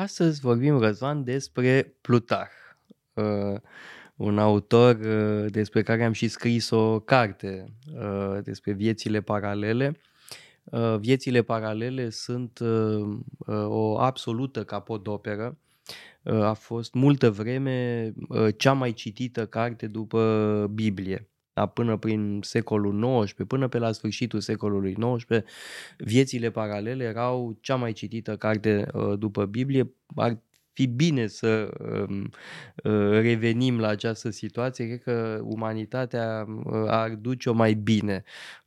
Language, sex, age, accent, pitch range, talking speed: Romanian, male, 20-39, native, 105-125 Hz, 105 wpm